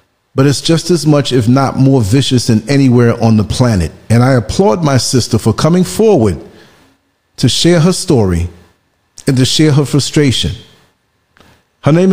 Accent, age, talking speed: American, 40-59, 165 wpm